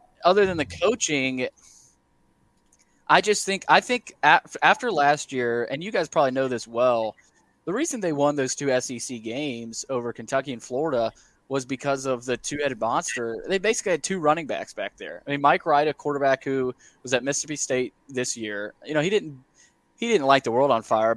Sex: male